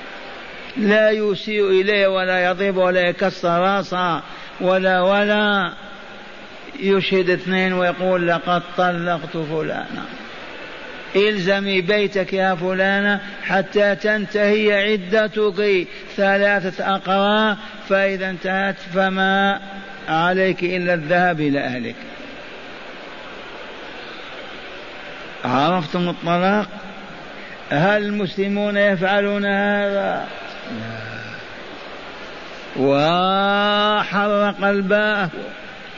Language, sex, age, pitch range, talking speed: Arabic, male, 50-69, 185-210 Hz, 70 wpm